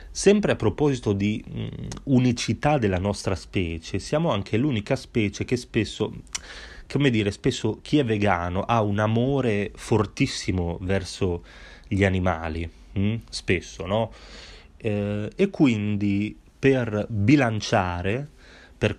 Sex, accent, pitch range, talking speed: male, native, 95-120 Hz, 110 wpm